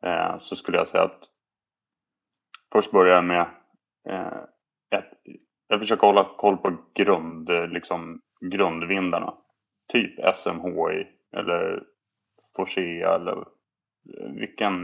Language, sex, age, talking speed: Swedish, male, 20-39, 95 wpm